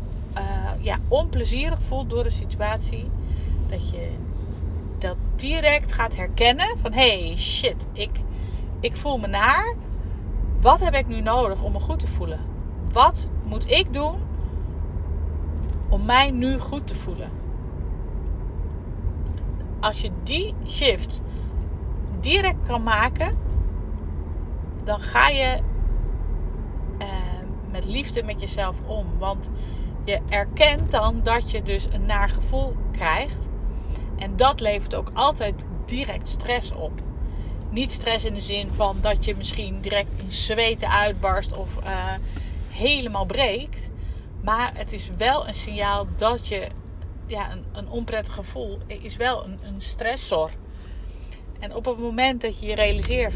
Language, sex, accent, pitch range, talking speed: Dutch, female, Dutch, 75-95 Hz, 130 wpm